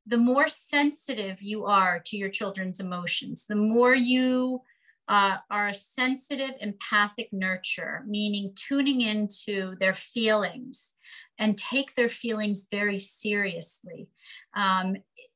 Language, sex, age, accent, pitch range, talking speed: English, female, 40-59, American, 195-240 Hz, 115 wpm